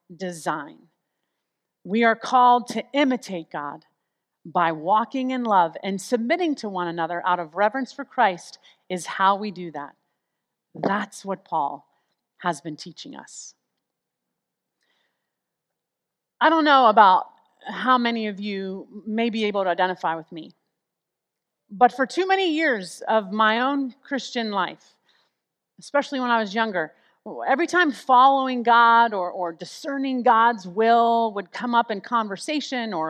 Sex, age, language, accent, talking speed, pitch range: female, 40-59, English, American, 140 wpm, 195-270 Hz